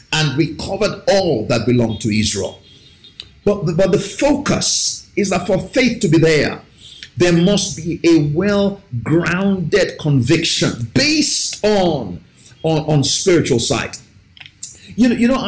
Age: 50-69